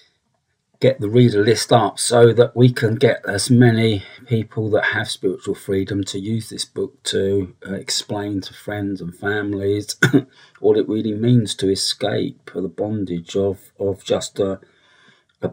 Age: 40-59